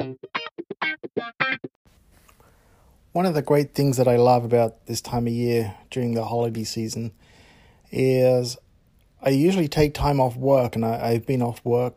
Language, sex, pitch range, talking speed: English, male, 115-140 Hz, 150 wpm